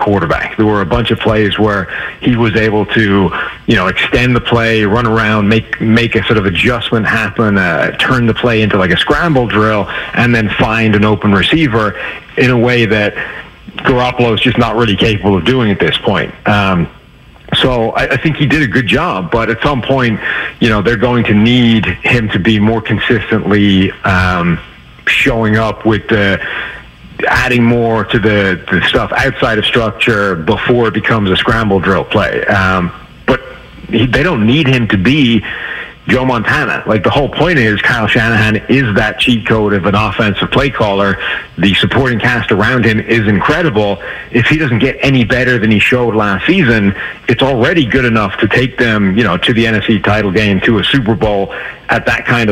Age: 40-59